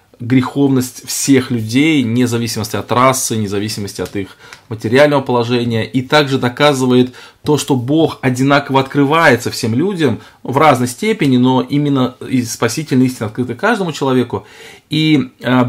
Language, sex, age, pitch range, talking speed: Russian, male, 20-39, 120-140 Hz, 125 wpm